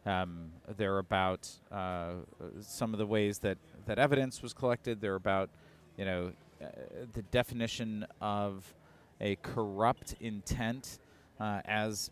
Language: English